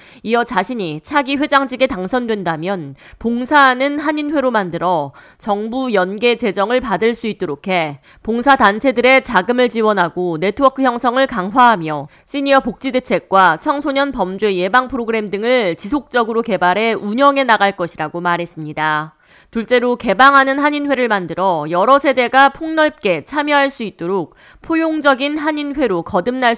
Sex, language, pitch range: female, Korean, 185-270 Hz